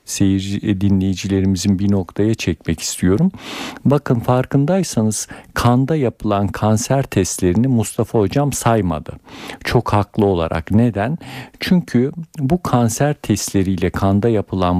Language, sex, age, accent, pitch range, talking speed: Turkish, male, 50-69, native, 95-125 Hz, 100 wpm